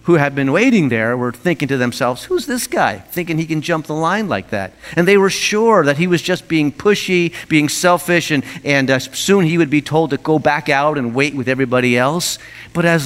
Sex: male